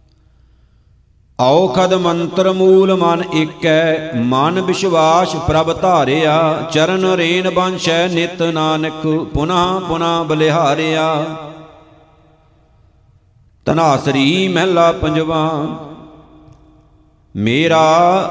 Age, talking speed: 50-69, 70 wpm